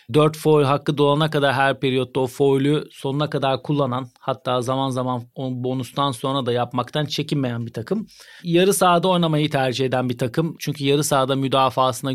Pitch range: 135-160 Hz